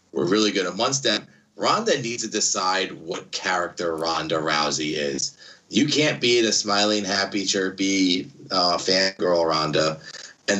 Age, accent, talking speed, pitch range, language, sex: 30-49, American, 140 wpm, 85-115 Hz, English, male